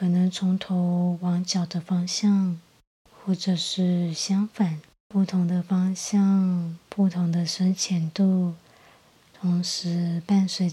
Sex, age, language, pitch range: female, 20-39, Chinese, 170-190 Hz